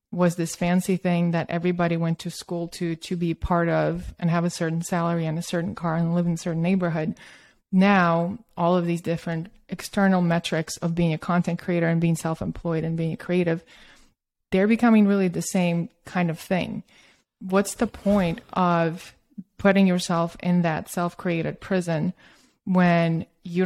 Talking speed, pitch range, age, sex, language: 170 wpm, 170-195 Hz, 20-39, female, English